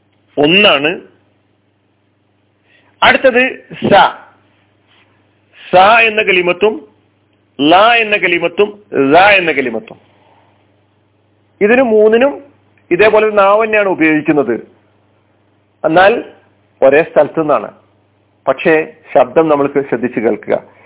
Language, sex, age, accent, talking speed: Malayalam, male, 40-59, native, 70 wpm